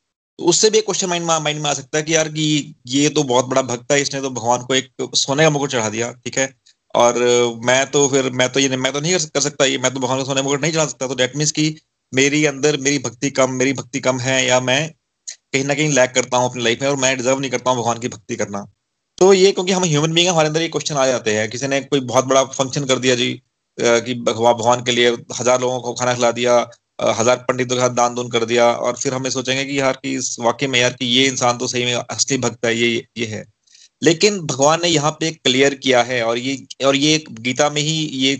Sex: male